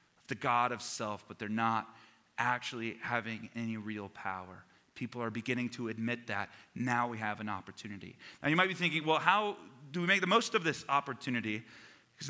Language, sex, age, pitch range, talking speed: English, male, 30-49, 115-140 Hz, 190 wpm